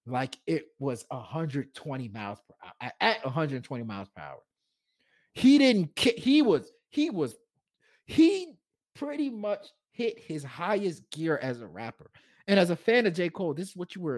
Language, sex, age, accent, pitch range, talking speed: English, male, 30-49, American, 110-160 Hz, 170 wpm